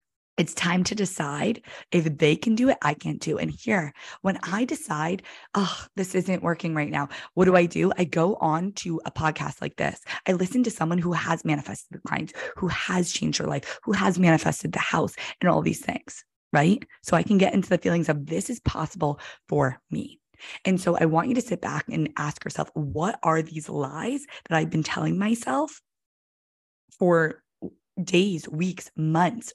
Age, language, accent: 20-39, English, American